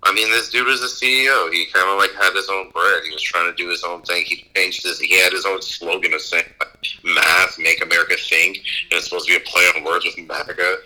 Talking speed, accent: 265 wpm, American